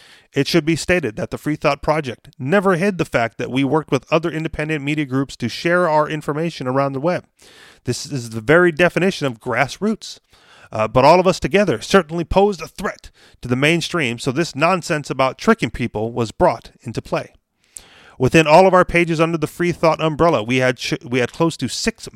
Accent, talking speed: American, 205 wpm